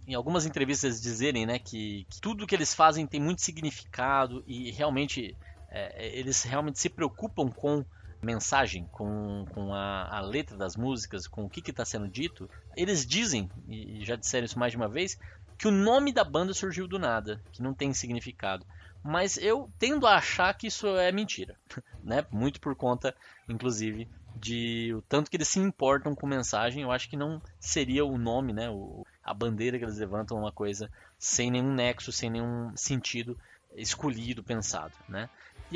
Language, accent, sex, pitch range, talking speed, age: Portuguese, Brazilian, male, 105-140 Hz, 180 wpm, 20-39